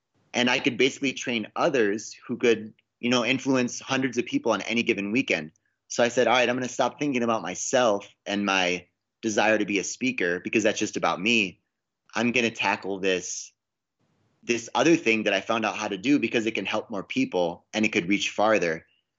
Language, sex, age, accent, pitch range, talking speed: English, male, 30-49, American, 100-120 Hz, 205 wpm